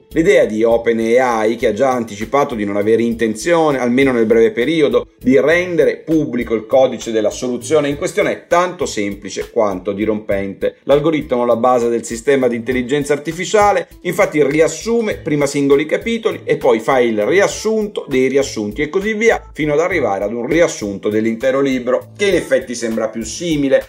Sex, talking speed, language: male, 165 wpm, Italian